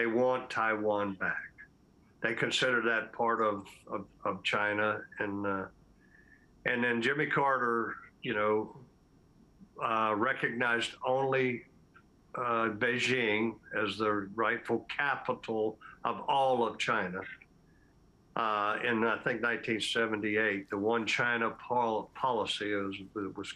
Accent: American